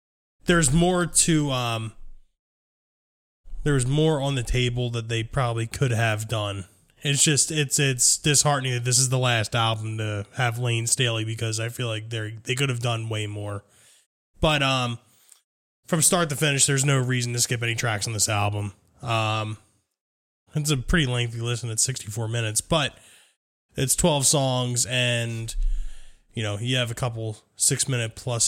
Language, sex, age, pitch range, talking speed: English, male, 20-39, 110-140 Hz, 170 wpm